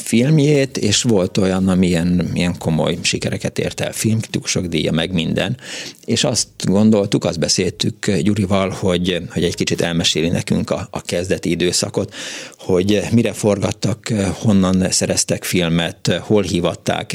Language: Hungarian